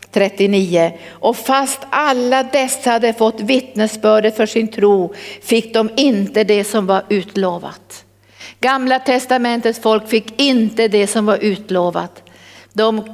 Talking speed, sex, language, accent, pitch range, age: 130 wpm, female, Swedish, native, 195-245 Hz, 50-69